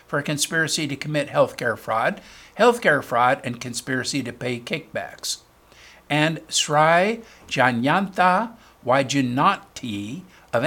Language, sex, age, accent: English, male, 60-79, American